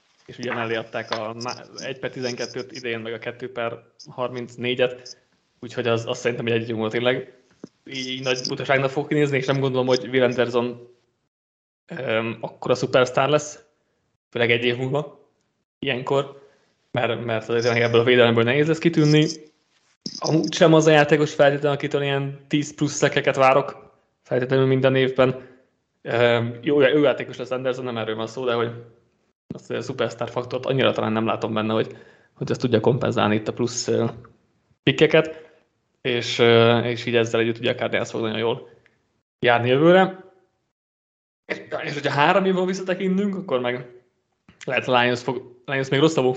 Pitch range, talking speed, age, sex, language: 115-145 Hz, 155 wpm, 20-39, male, Hungarian